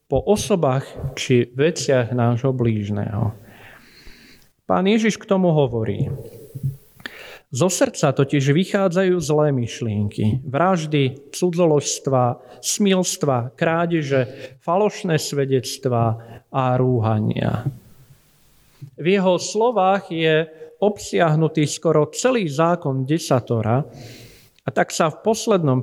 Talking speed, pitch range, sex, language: 90 wpm, 130-170 Hz, male, Slovak